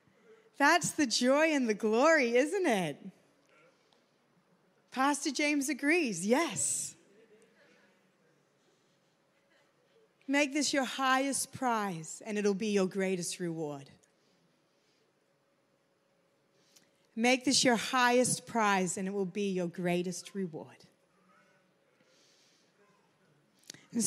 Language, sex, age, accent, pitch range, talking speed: English, female, 30-49, American, 215-295 Hz, 90 wpm